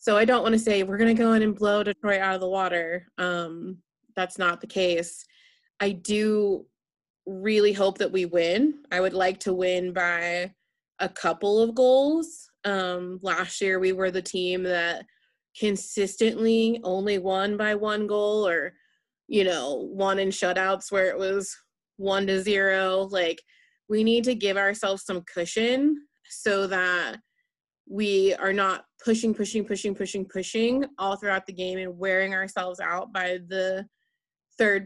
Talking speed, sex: 165 wpm, female